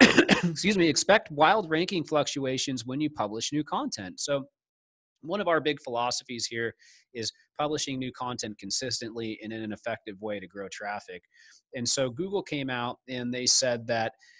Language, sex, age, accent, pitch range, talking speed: English, male, 30-49, American, 115-150 Hz, 165 wpm